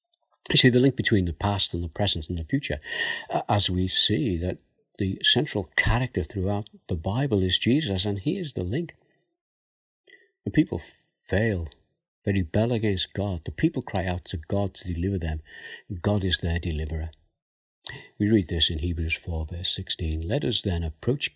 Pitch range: 80-105 Hz